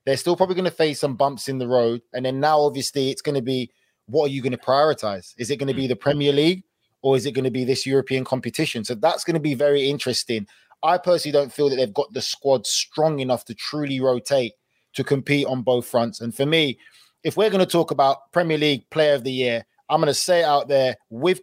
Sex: male